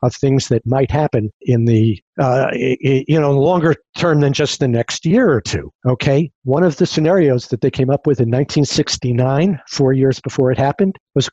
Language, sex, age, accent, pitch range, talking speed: English, male, 50-69, American, 115-145 Hz, 195 wpm